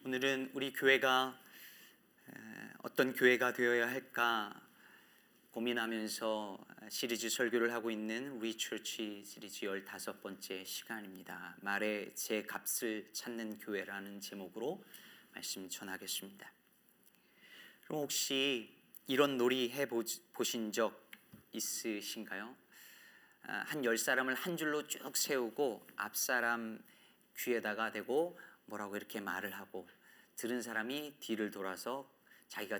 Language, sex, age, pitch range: Korean, male, 30-49, 105-135 Hz